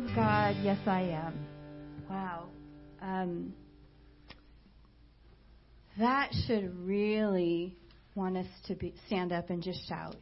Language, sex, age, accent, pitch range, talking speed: English, female, 40-59, American, 175-225 Hz, 105 wpm